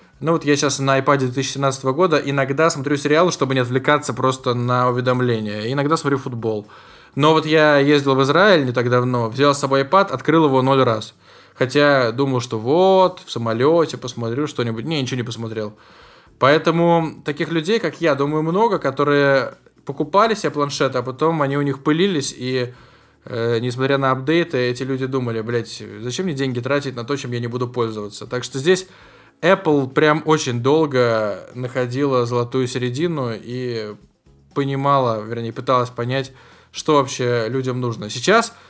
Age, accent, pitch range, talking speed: 20-39, native, 120-145 Hz, 165 wpm